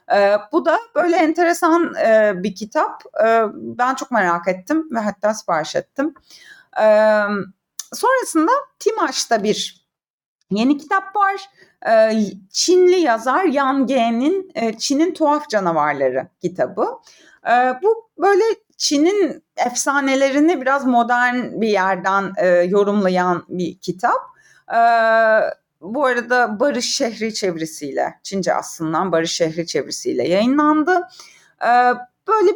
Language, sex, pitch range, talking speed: Turkish, female, 220-340 Hz, 95 wpm